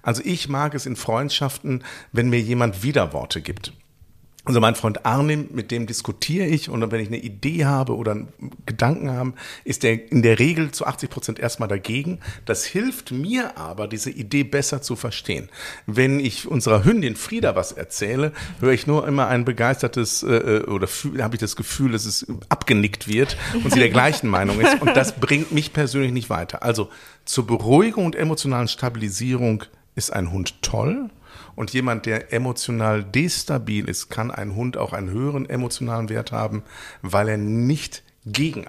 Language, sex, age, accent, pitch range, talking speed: German, male, 50-69, German, 105-140 Hz, 170 wpm